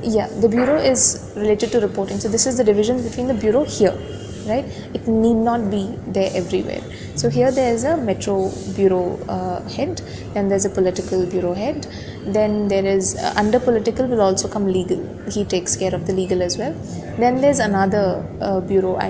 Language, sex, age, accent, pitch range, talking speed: English, female, 20-39, Indian, 190-230 Hz, 195 wpm